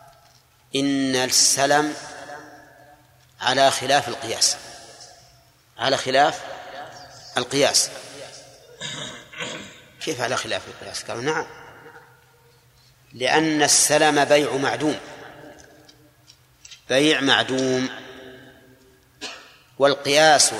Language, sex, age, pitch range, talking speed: Arabic, male, 40-59, 130-150 Hz, 60 wpm